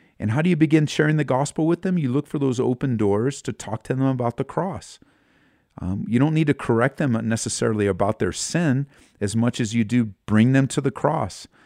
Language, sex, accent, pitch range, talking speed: English, male, American, 105-135 Hz, 225 wpm